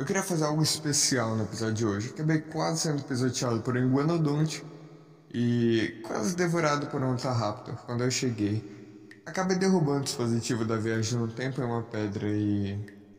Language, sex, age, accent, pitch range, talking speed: Portuguese, male, 20-39, Brazilian, 110-145 Hz, 175 wpm